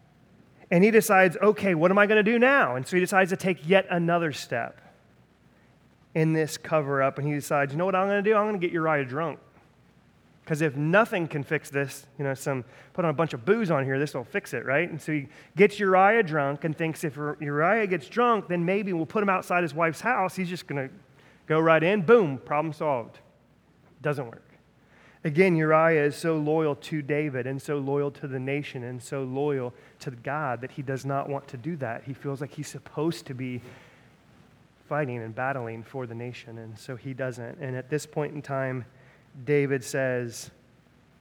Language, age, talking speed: English, 30-49, 210 wpm